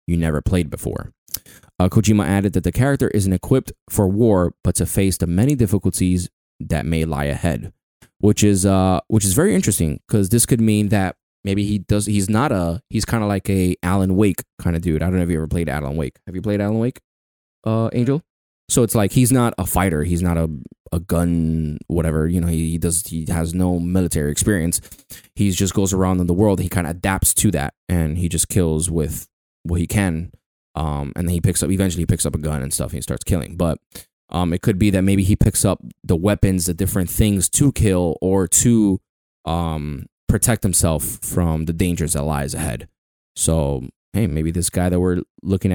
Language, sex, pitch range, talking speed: English, male, 85-105 Hz, 220 wpm